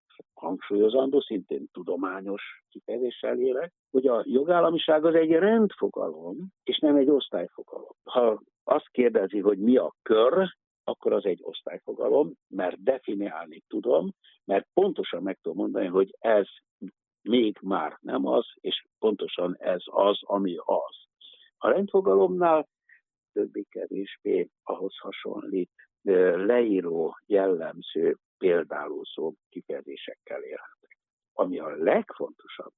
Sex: male